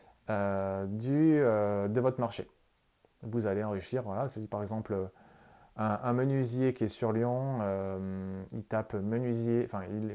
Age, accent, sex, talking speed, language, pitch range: 30-49, French, male, 150 wpm, French, 110-135 Hz